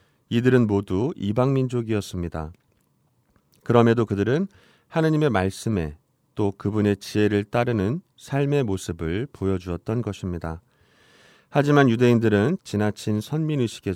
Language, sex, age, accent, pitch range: Korean, male, 30-49, native, 95-130 Hz